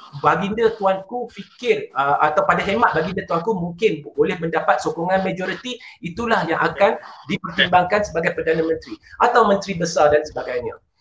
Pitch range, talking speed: 165-240 Hz, 140 wpm